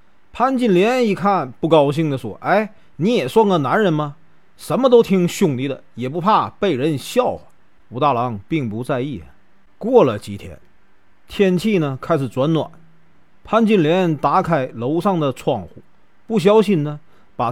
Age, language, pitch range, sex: 40-59, Chinese, 125-200 Hz, male